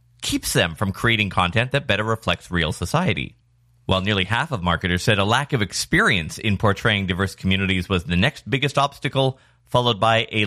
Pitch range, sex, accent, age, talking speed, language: 95-125 Hz, male, American, 30-49, 185 wpm, English